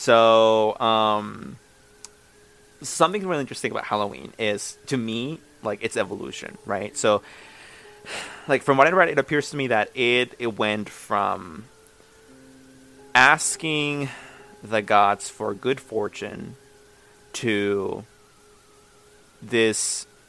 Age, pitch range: 30-49, 105-120 Hz